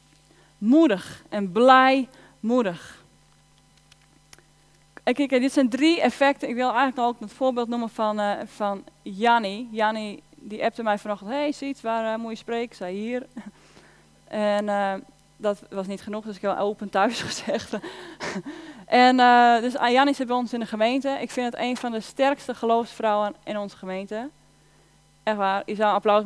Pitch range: 210-260 Hz